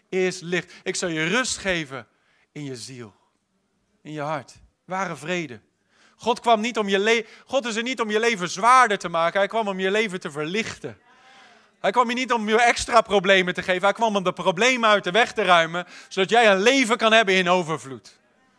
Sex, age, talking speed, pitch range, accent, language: male, 40-59, 195 wpm, 185-230 Hz, Dutch, English